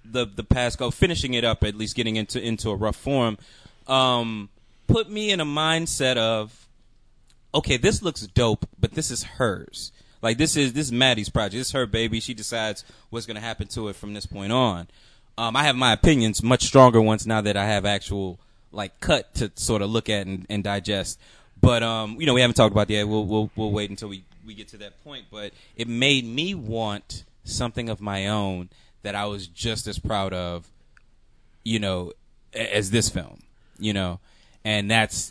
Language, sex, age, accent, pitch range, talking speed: English, male, 20-39, American, 105-130 Hz, 205 wpm